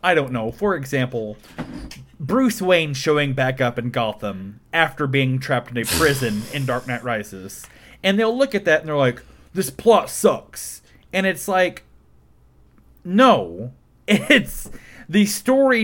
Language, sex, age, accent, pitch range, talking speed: English, male, 30-49, American, 130-185 Hz, 150 wpm